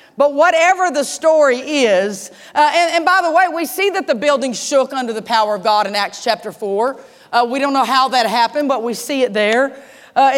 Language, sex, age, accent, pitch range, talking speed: English, female, 40-59, American, 260-315 Hz, 220 wpm